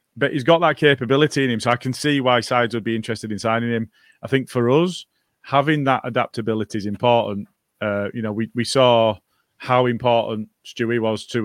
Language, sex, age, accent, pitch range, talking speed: English, male, 30-49, British, 115-135 Hz, 205 wpm